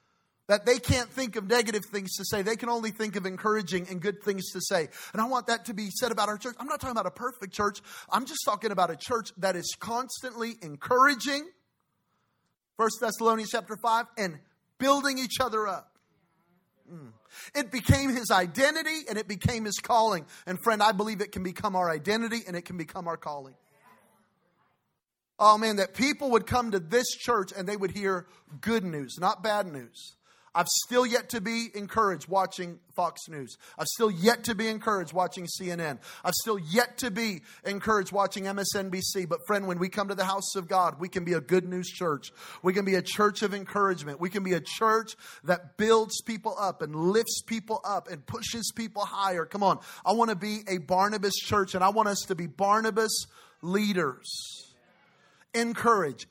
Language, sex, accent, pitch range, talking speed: English, male, American, 185-230 Hz, 195 wpm